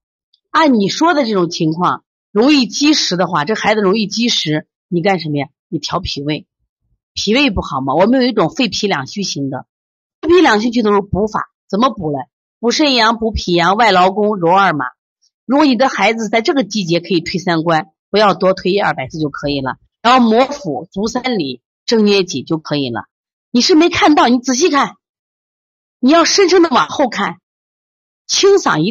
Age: 30-49